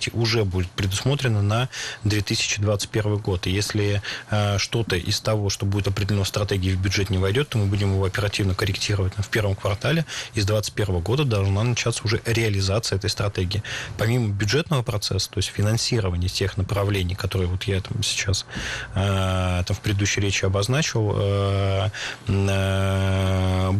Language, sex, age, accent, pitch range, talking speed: Russian, male, 20-39, native, 95-115 Hz, 155 wpm